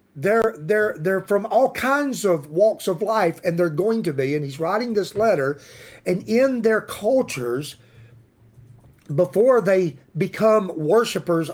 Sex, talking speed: male, 145 wpm